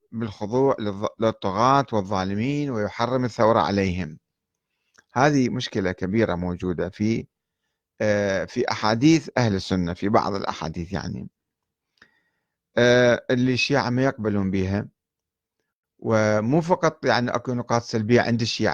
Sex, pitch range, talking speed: male, 105-145 Hz, 100 wpm